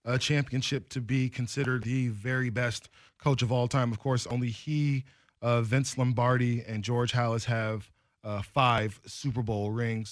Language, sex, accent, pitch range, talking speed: English, male, American, 115-140 Hz, 165 wpm